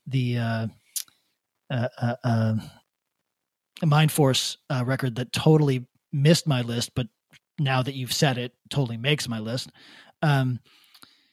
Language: English